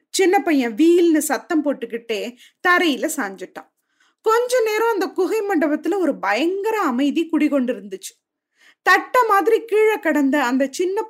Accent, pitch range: native, 265-390 Hz